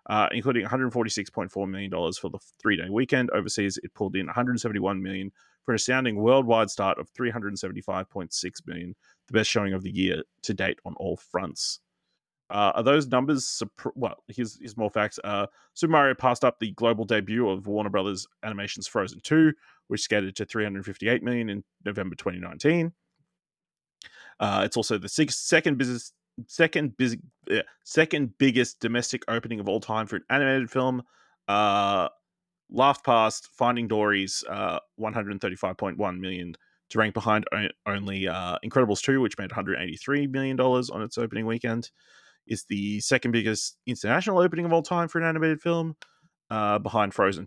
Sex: male